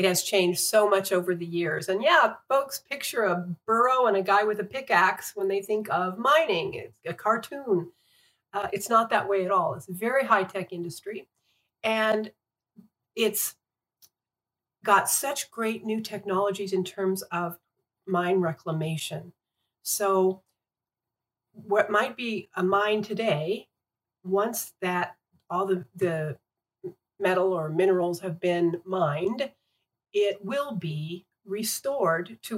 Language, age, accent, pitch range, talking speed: English, 50-69, American, 170-210 Hz, 140 wpm